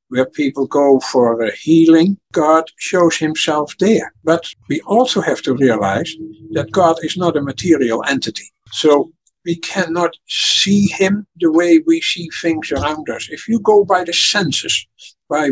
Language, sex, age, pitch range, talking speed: English, male, 60-79, 155-210 Hz, 160 wpm